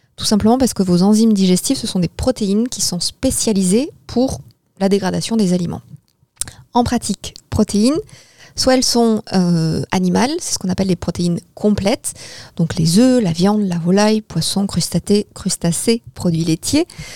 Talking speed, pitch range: 160 wpm, 175-220 Hz